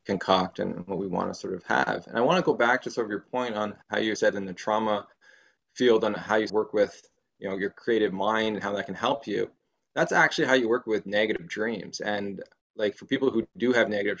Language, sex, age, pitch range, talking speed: English, male, 20-39, 105-125 Hz, 255 wpm